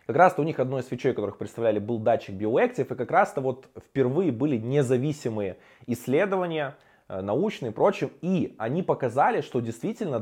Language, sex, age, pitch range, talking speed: Russian, male, 20-39, 110-140 Hz, 160 wpm